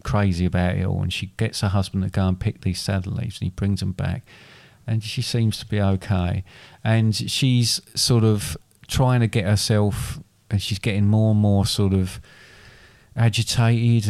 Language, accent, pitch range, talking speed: English, British, 100-125 Hz, 185 wpm